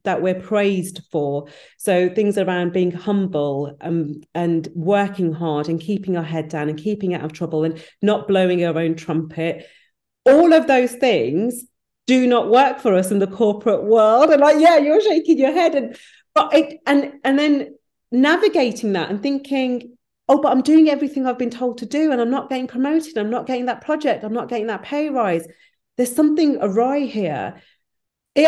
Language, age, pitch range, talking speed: English, 40-59, 170-245 Hz, 185 wpm